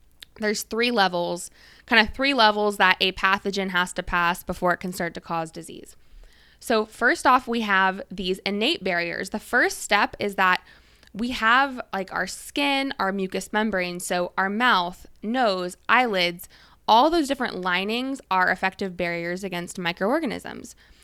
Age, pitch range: 20-39, 185-220 Hz